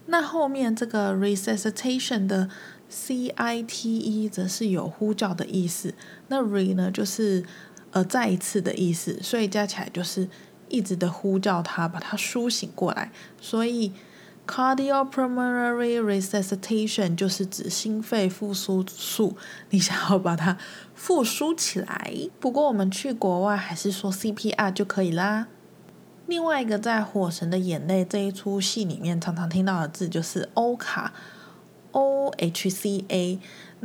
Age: 20-39